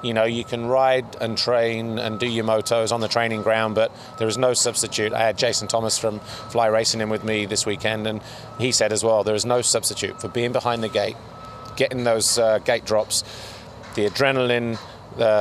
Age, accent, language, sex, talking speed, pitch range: 30-49, British, English, male, 210 wpm, 105-115 Hz